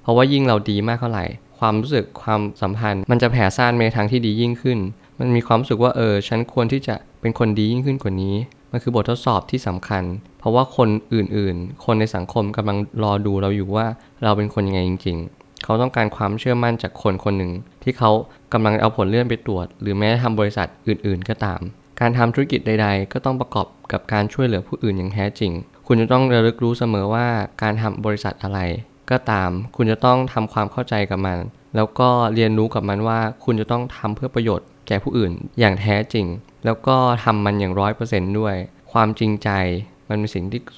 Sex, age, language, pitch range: male, 20-39, Thai, 100-120 Hz